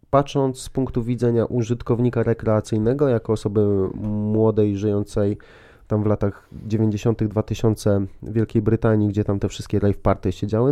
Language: Polish